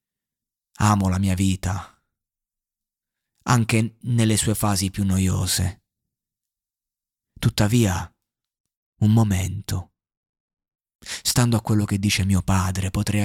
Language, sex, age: Italian, male, 30-49